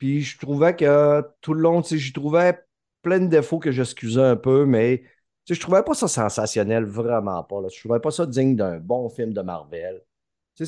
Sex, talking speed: male, 210 wpm